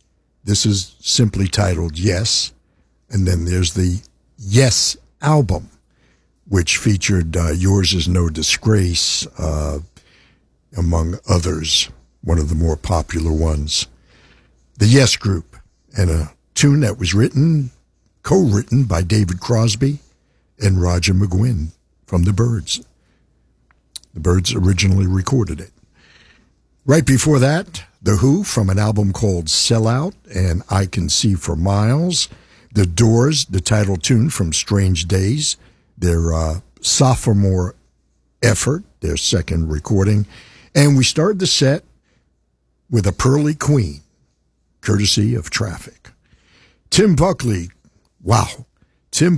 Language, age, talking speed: English, 60-79, 120 wpm